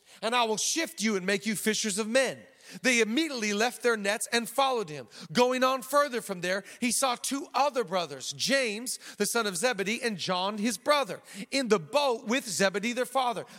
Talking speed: 200 wpm